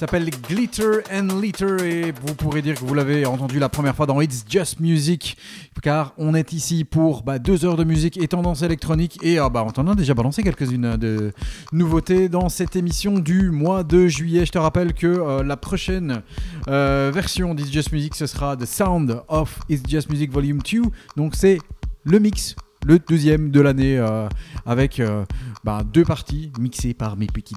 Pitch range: 125-170 Hz